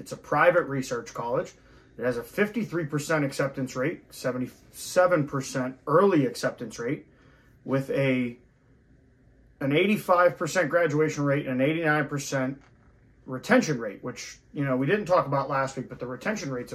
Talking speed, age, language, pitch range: 140 wpm, 30-49, English, 125-165 Hz